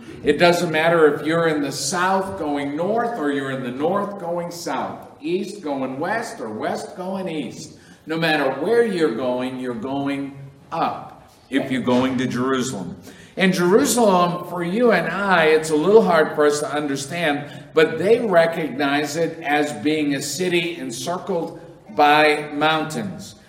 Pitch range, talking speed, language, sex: 140-175 Hz, 160 wpm, English, male